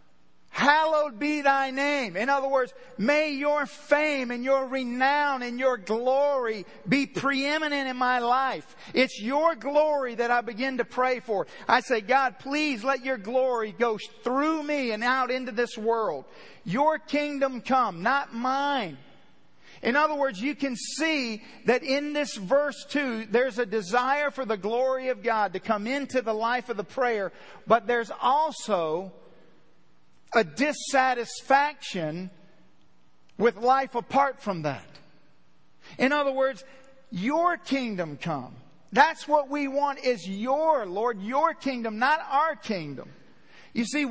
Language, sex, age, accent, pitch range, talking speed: English, male, 40-59, American, 220-280 Hz, 145 wpm